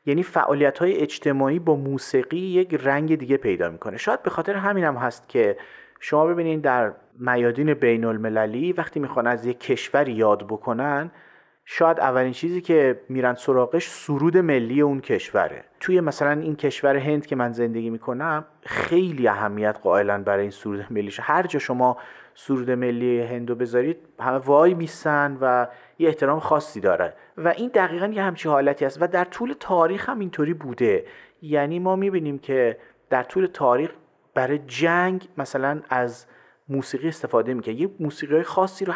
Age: 30-49